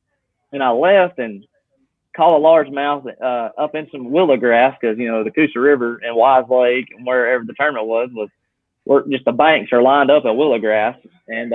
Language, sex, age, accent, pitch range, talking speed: English, male, 20-39, American, 120-145 Hz, 205 wpm